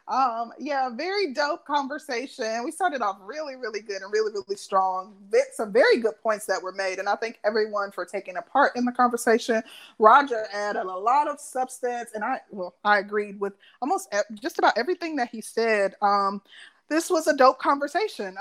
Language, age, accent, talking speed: English, 20-39, American, 190 wpm